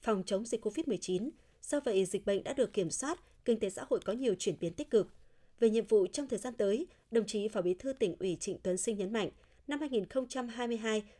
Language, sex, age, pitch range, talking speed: Vietnamese, female, 20-39, 195-275 Hz, 230 wpm